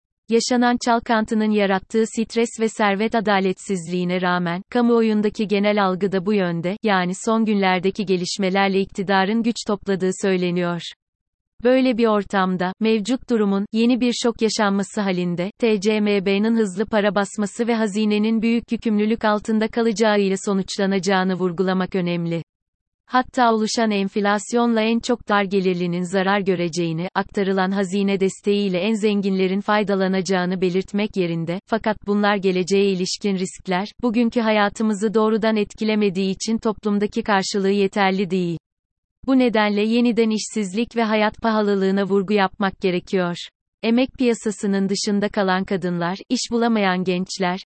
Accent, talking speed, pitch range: native, 120 wpm, 190-220 Hz